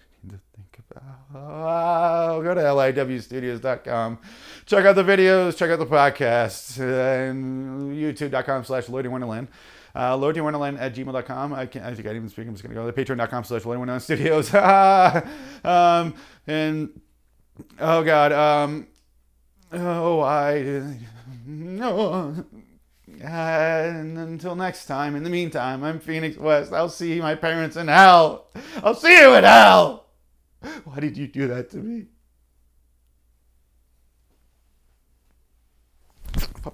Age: 30-49